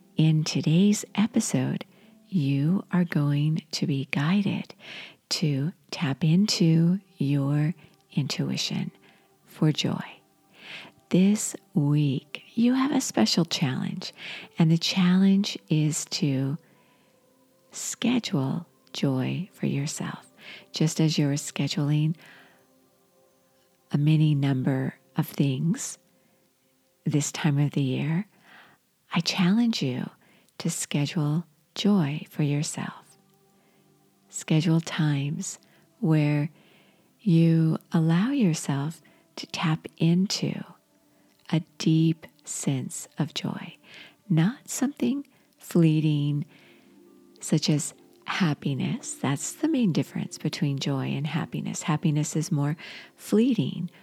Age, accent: 50-69, American